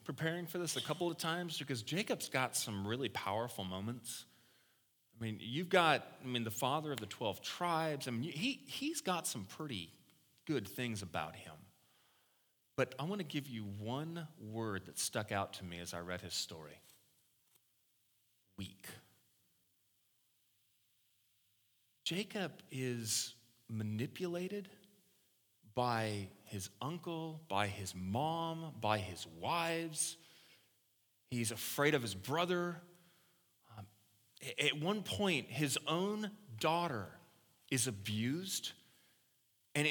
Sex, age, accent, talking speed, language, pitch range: male, 30-49, American, 120 wpm, English, 110-175 Hz